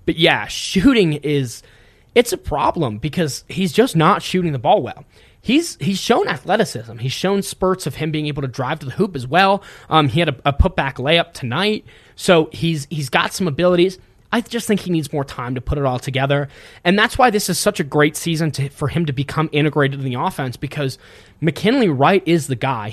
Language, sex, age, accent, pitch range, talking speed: English, male, 20-39, American, 135-185 Hz, 215 wpm